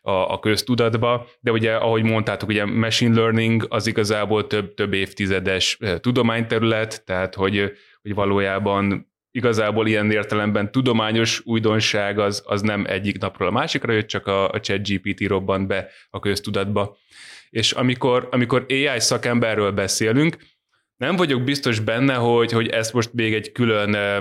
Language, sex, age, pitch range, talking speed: Hungarian, male, 20-39, 100-120 Hz, 140 wpm